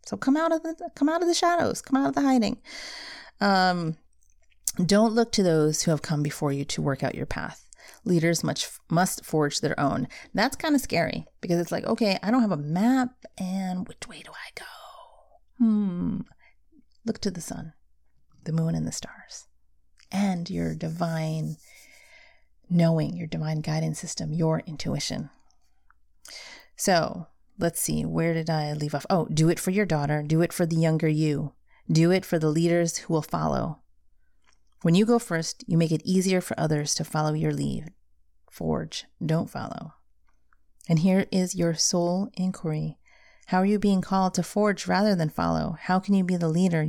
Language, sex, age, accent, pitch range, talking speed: English, female, 30-49, American, 155-220 Hz, 180 wpm